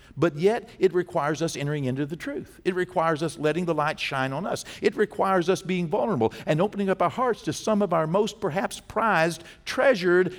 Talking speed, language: 210 wpm, English